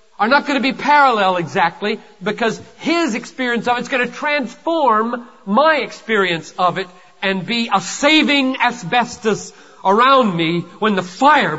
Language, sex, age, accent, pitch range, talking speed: English, male, 40-59, American, 195-250 Hz, 155 wpm